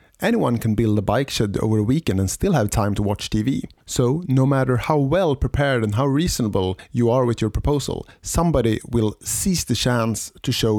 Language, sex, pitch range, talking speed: English, male, 105-140 Hz, 205 wpm